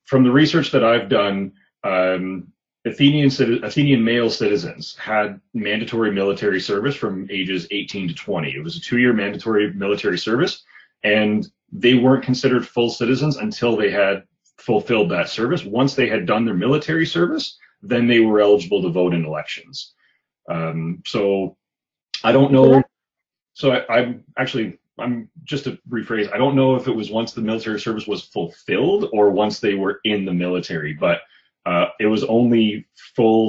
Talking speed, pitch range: 165 wpm, 95-125 Hz